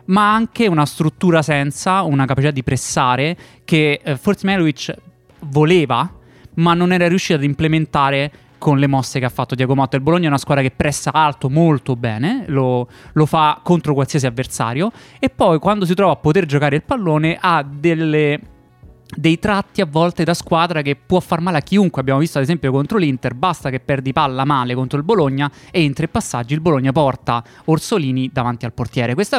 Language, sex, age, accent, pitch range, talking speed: Italian, male, 20-39, native, 135-170 Hz, 190 wpm